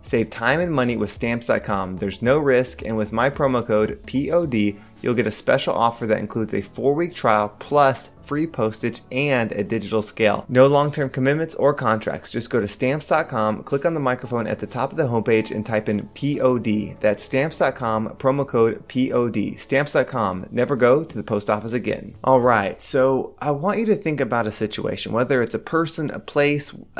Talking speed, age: 190 wpm, 20-39